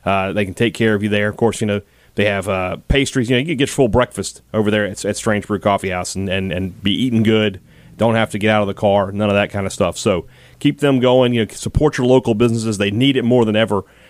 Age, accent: 30-49, American